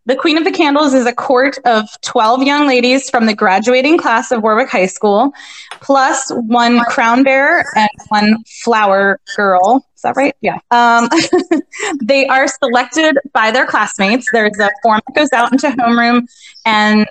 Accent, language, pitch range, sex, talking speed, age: American, English, 205-260 Hz, female, 170 wpm, 20-39